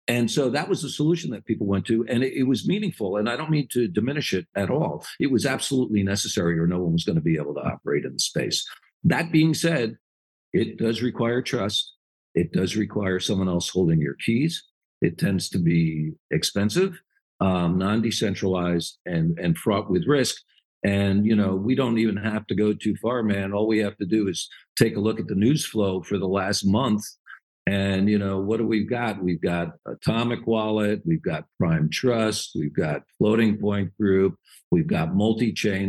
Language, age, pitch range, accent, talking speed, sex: English, 50-69, 95-120 Hz, American, 200 wpm, male